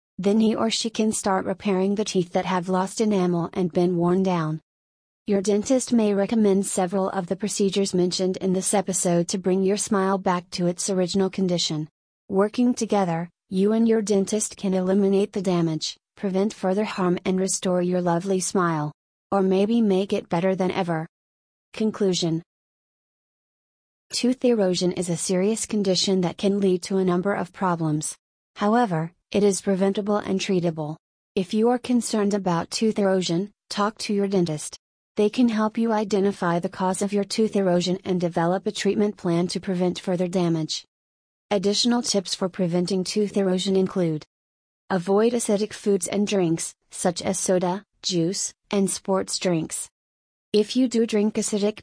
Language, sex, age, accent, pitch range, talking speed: English, female, 30-49, American, 180-205 Hz, 160 wpm